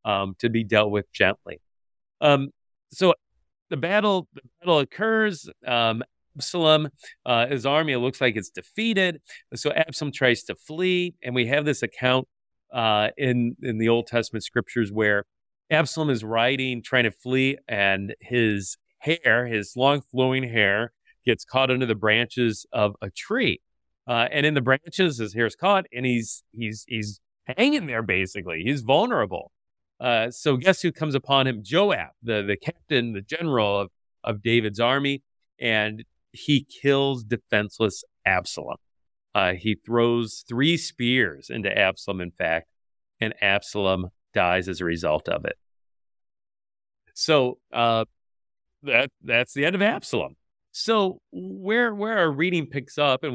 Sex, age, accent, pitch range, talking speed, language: male, 40-59, American, 110-145 Hz, 150 wpm, English